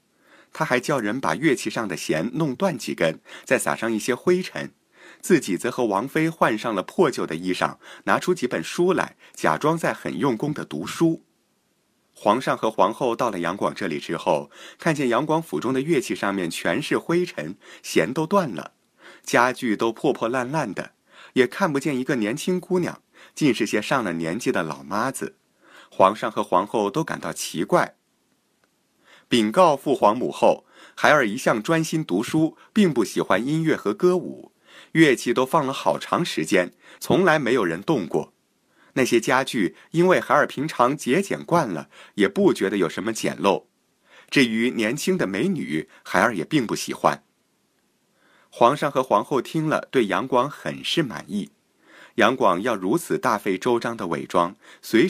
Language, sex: Chinese, male